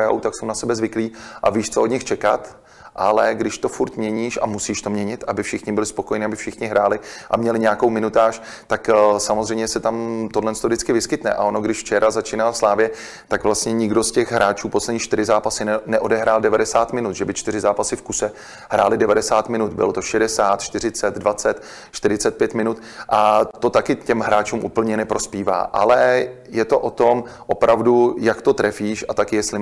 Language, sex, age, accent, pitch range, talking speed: Czech, male, 30-49, native, 105-115 Hz, 185 wpm